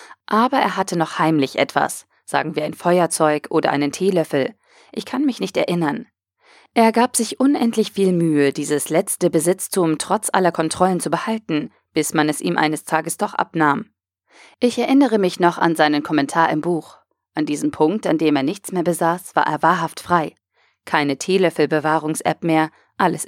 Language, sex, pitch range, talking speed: German, female, 150-190 Hz, 175 wpm